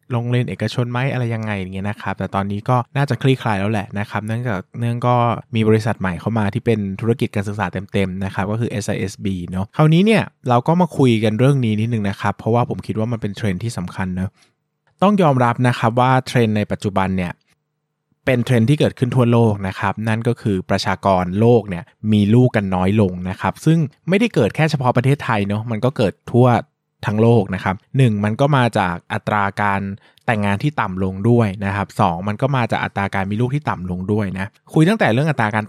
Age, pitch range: 20-39, 100-130 Hz